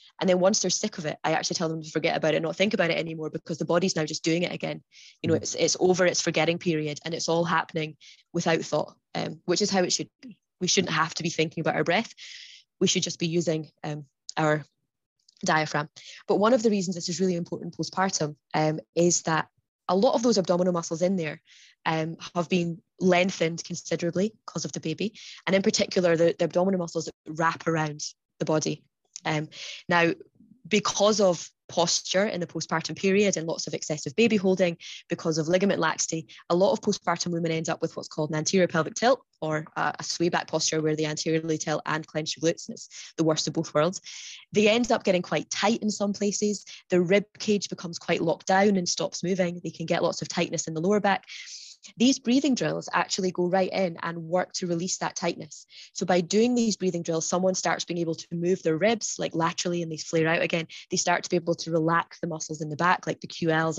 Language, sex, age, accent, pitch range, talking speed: English, female, 20-39, British, 160-190 Hz, 225 wpm